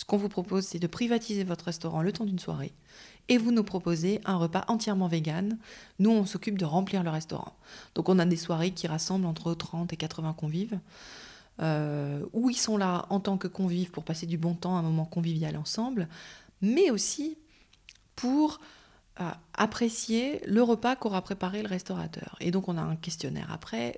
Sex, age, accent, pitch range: female, 30-49, French, 165-205 Hz